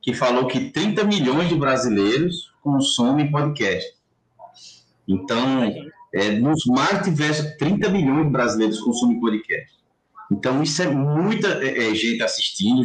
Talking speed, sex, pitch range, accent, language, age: 115 wpm, male, 120-175 Hz, Brazilian, Portuguese, 20-39